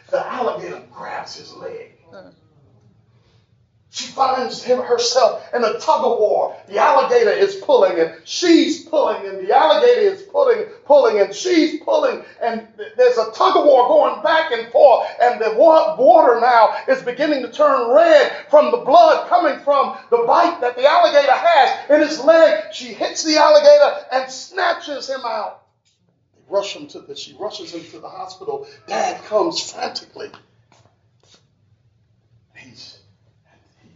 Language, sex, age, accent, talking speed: English, male, 40-59, American, 135 wpm